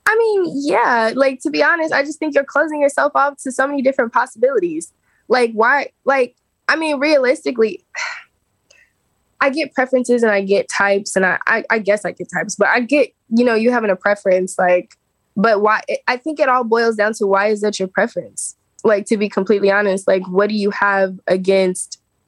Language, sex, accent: English, female, American